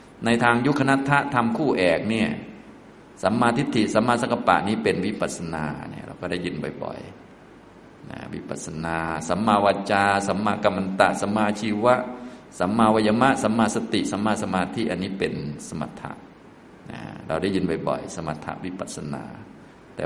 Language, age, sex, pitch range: Thai, 20-39, male, 85-110 Hz